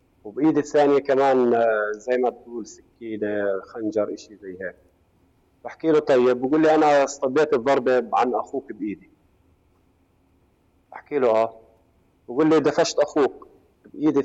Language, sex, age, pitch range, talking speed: Arabic, male, 40-59, 90-135 Hz, 125 wpm